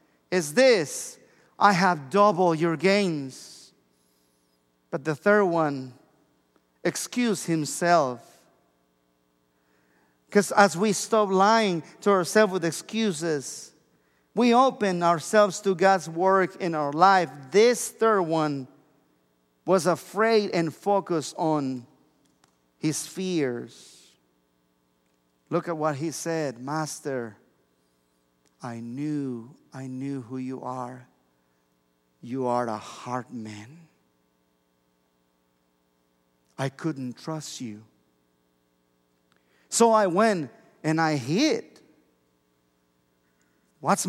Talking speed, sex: 95 wpm, male